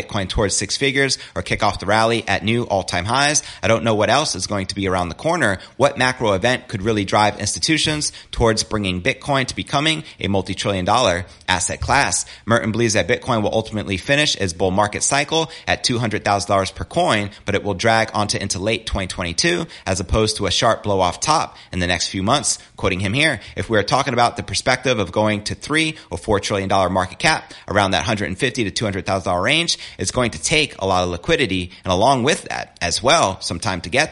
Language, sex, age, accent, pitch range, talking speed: English, male, 30-49, American, 95-120 Hz, 210 wpm